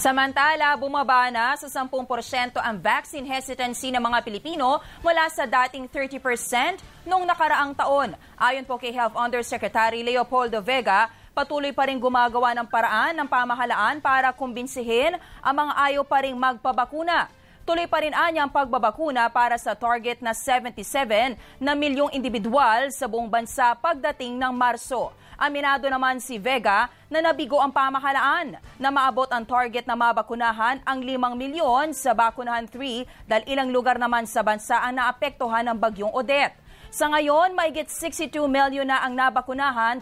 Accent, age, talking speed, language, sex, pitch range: Filipino, 20-39, 145 wpm, English, female, 240-285 Hz